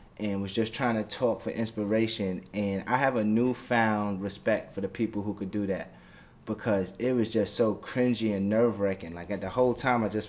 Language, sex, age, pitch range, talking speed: English, male, 20-39, 100-120 Hz, 210 wpm